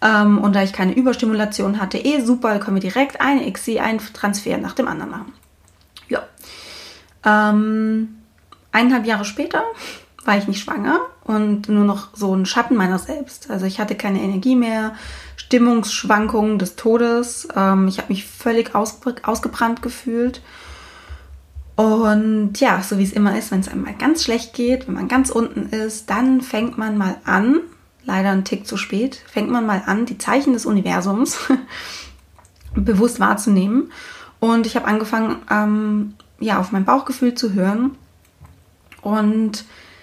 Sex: female